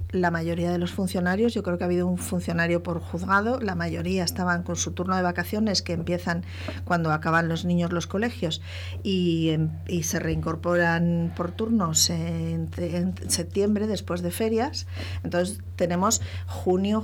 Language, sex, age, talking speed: Spanish, female, 40-59, 160 wpm